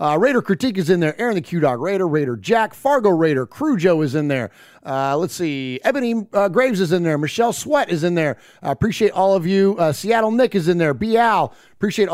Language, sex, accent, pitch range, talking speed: English, male, American, 145-190 Hz, 230 wpm